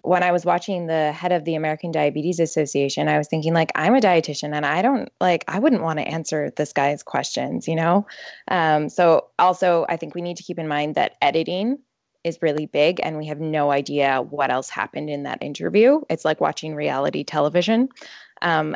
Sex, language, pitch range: female, English, 155-185 Hz